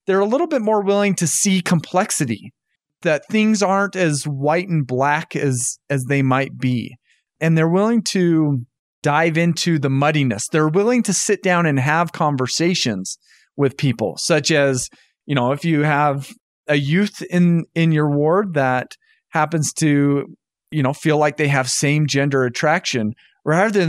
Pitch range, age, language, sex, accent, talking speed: 140-185 Hz, 30-49, English, male, American, 165 wpm